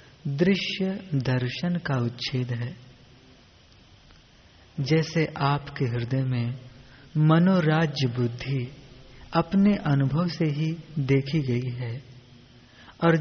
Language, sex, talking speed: Hindi, female, 85 wpm